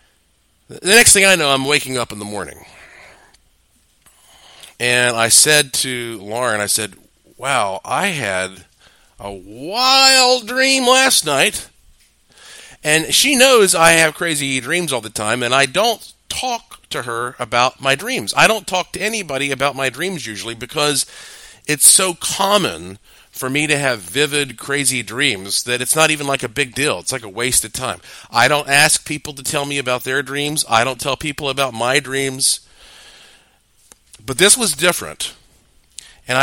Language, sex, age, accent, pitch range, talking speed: English, male, 40-59, American, 115-150 Hz, 165 wpm